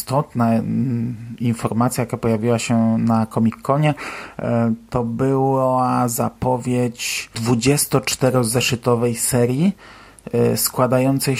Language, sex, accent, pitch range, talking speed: Polish, male, native, 115-125 Hz, 80 wpm